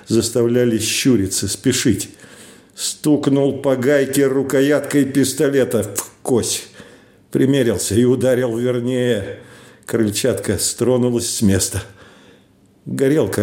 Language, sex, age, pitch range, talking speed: Russian, male, 50-69, 115-135 Hz, 85 wpm